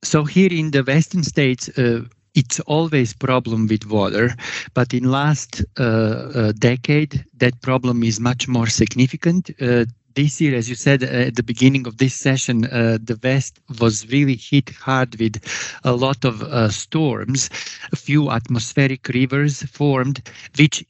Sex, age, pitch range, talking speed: male, 50-69, 115-140 Hz, 155 wpm